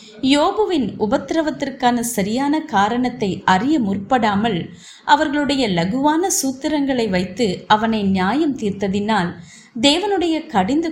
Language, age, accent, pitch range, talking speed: Tamil, 30-49, native, 195-265 Hz, 80 wpm